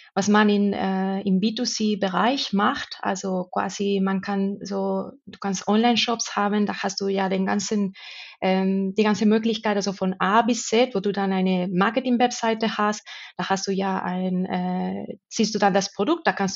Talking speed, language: 180 wpm, German